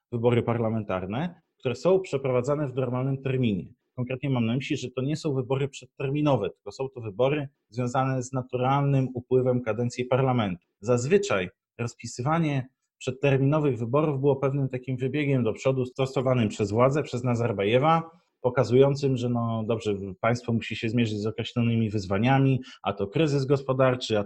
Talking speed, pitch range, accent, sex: 145 wpm, 115-135 Hz, native, male